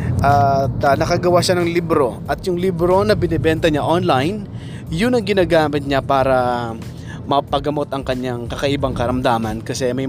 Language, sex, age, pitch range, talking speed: Filipino, male, 20-39, 125-155 Hz, 150 wpm